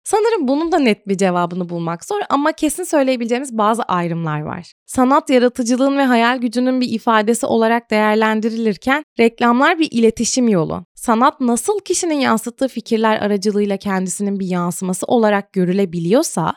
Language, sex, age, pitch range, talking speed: Turkish, female, 20-39, 205-290 Hz, 140 wpm